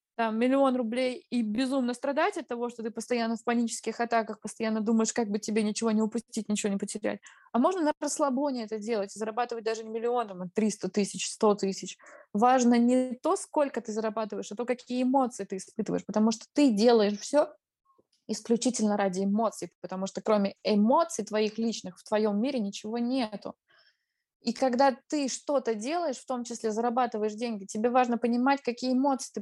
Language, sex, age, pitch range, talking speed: Russian, female, 20-39, 215-255 Hz, 175 wpm